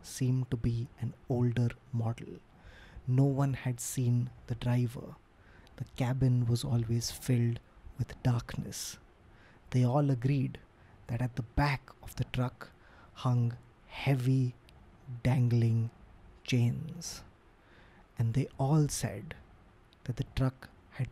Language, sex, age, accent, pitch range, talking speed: English, male, 20-39, Indian, 110-145 Hz, 115 wpm